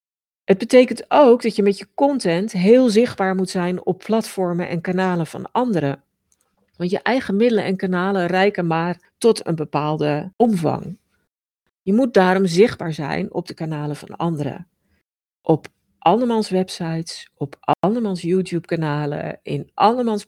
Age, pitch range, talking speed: 50-69, 160-205 Hz, 145 wpm